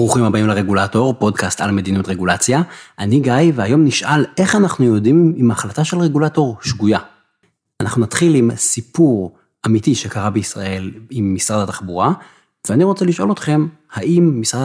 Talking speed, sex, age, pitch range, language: 145 wpm, male, 30-49, 105-155 Hz, Hebrew